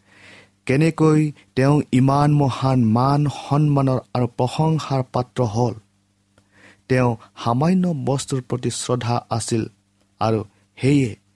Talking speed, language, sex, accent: 95 wpm, English, male, Indian